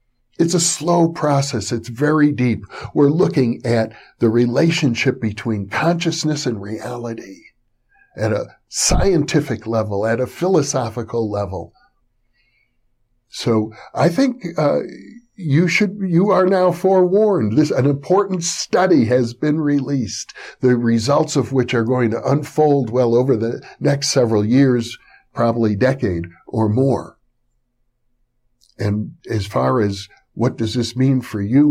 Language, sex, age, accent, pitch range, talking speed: English, male, 60-79, American, 115-160 Hz, 130 wpm